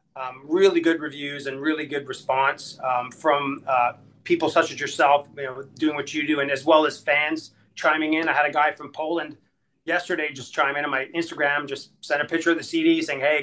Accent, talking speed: American, 225 wpm